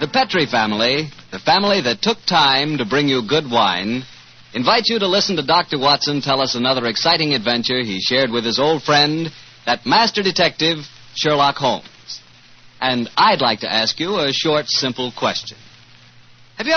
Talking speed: 170 wpm